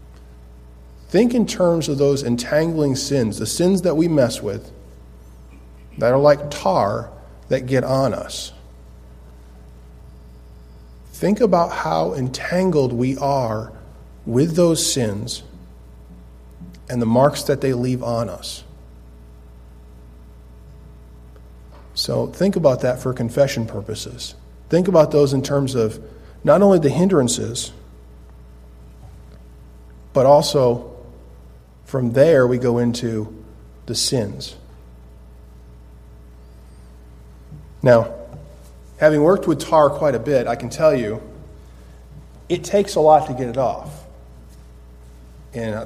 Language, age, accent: English, 40-59, American